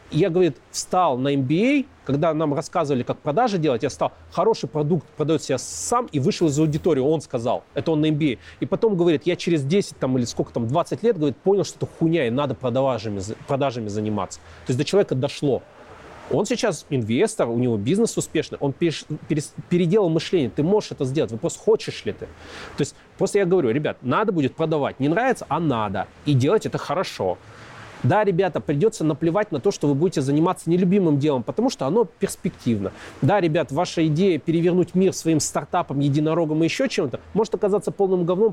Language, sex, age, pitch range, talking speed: Russian, male, 30-49, 140-185 Hz, 195 wpm